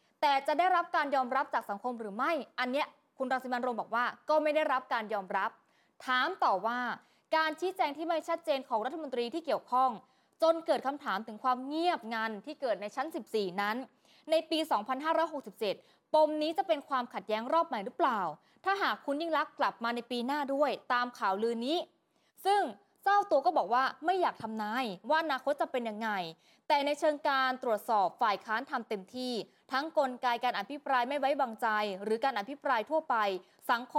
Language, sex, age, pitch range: Thai, female, 20-39, 230-310 Hz